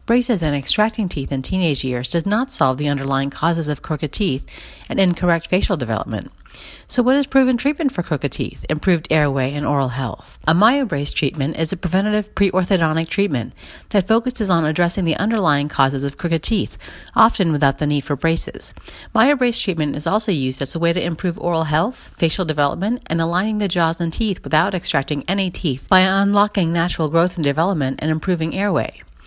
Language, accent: English, American